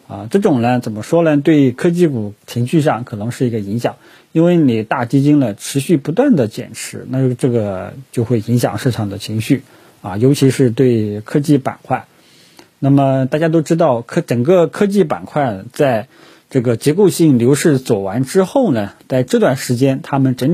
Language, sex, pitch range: Chinese, male, 115-145 Hz